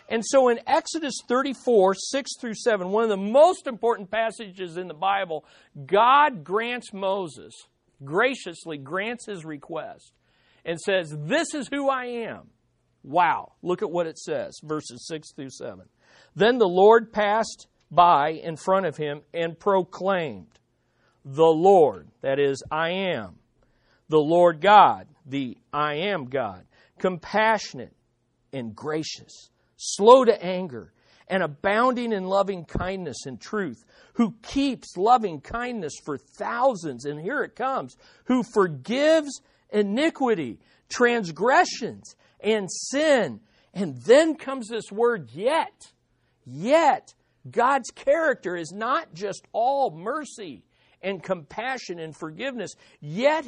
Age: 50-69